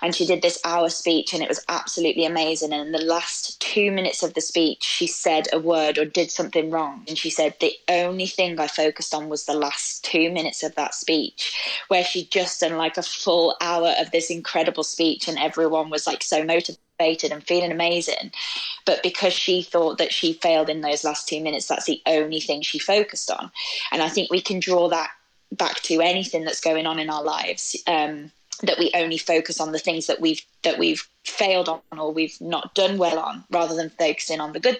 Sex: female